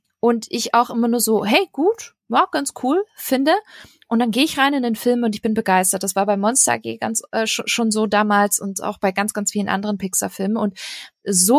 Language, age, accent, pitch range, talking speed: German, 20-39, German, 200-250 Hz, 235 wpm